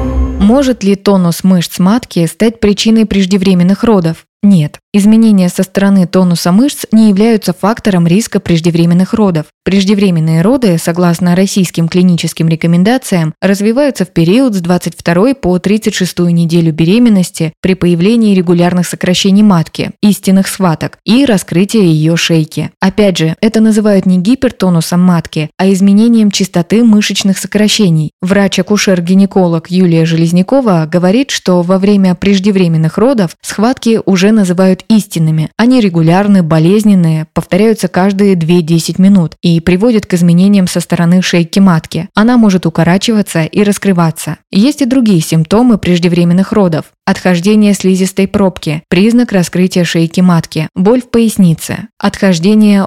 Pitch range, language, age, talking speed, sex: 175-210 Hz, Russian, 20-39, 125 wpm, female